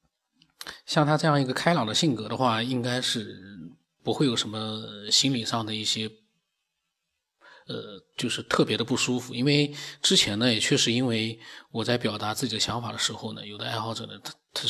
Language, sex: Chinese, male